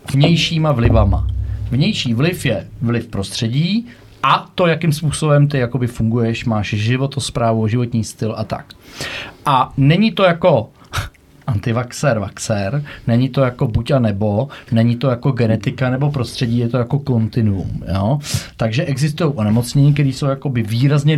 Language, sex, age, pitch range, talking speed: Czech, male, 40-59, 115-145 Hz, 140 wpm